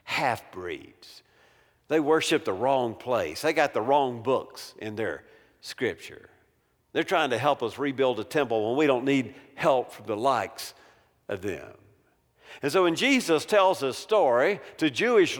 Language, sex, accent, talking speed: English, male, American, 160 wpm